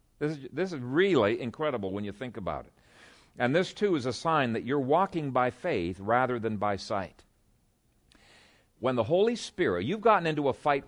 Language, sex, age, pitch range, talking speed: English, male, 50-69, 105-160 Hz, 190 wpm